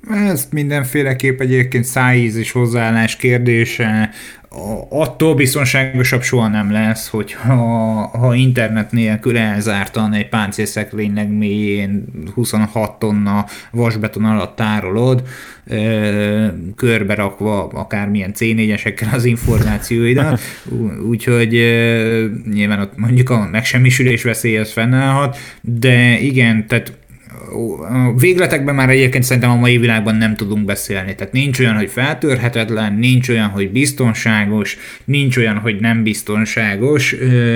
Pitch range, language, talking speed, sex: 105-125 Hz, Hungarian, 105 wpm, male